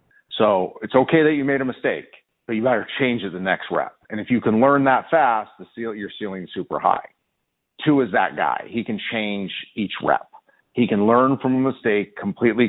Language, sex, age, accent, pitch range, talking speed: English, male, 40-59, American, 95-125 Hz, 220 wpm